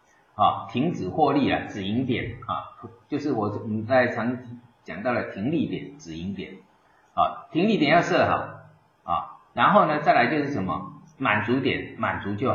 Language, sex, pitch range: Chinese, male, 110-140 Hz